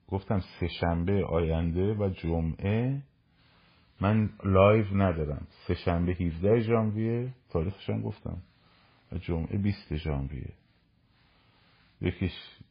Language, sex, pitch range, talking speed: Persian, male, 80-100 Hz, 95 wpm